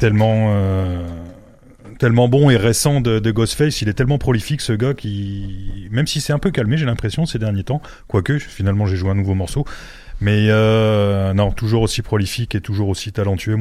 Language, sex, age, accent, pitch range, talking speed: French, male, 30-49, French, 95-115 Hz, 195 wpm